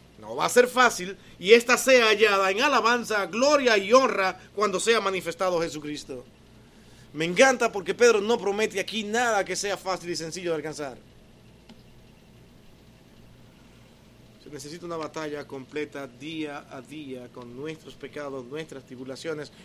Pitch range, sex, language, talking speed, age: 125-190 Hz, male, Spanish, 140 wpm, 30-49